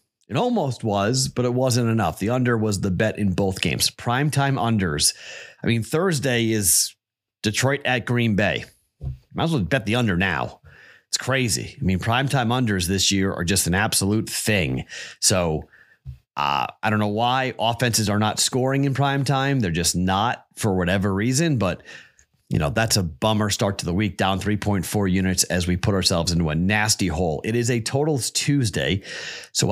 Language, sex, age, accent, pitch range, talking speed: English, male, 30-49, American, 95-120 Hz, 180 wpm